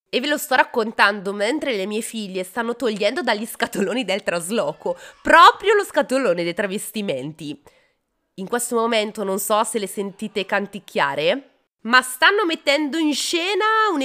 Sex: female